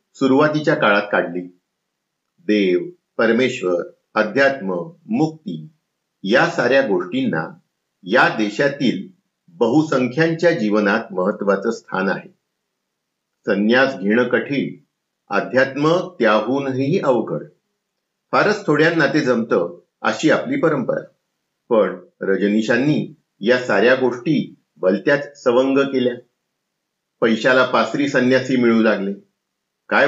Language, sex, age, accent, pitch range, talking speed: Marathi, male, 50-69, native, 115-165 Hz, 90 wpm